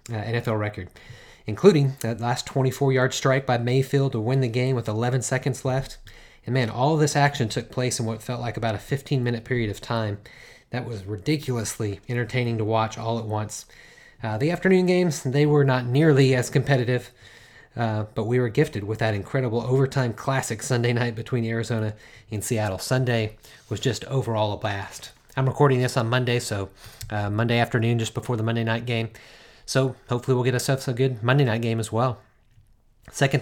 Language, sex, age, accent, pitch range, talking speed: English, male, 30-49, American, 110-135 Hz, 190 wpm